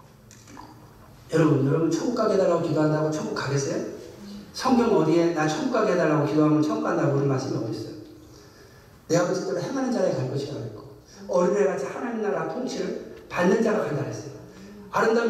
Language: Korean